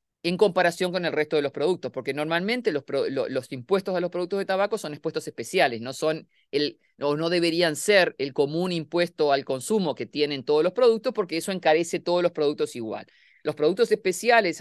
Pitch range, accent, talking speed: 145-205 Hz, Argentinian, 205 wpm